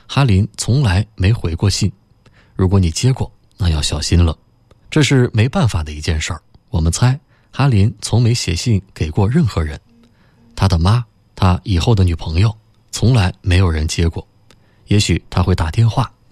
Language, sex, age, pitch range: Chinese, male, 20-39, 90-115 Hz